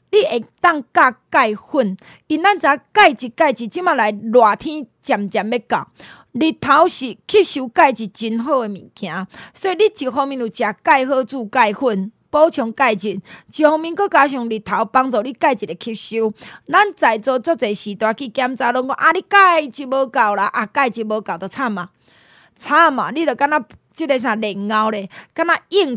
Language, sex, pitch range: Chinese, female, 225-320 Hz